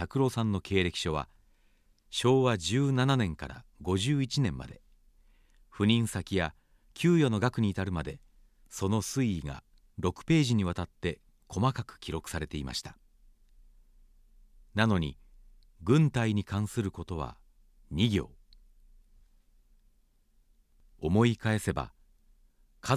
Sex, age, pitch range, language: male, 40-59, 75-115 Hz, Japanese